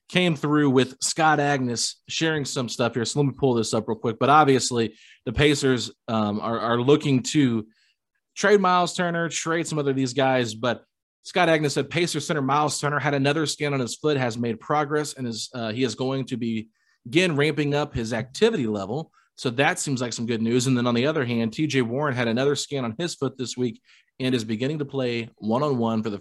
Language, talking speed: English, 220 wpm